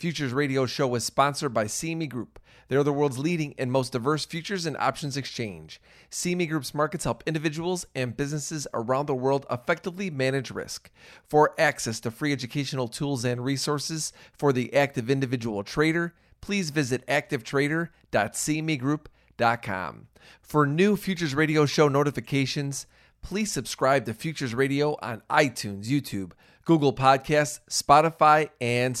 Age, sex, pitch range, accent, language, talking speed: 40-59, male, 125-155 Hz, American, English, 135 wpm